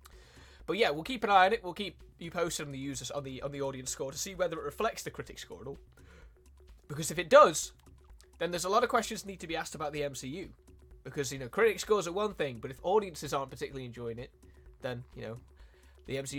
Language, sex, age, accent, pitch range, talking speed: Italian, male, 20-39, British, 120-155 Hz, 240 wpm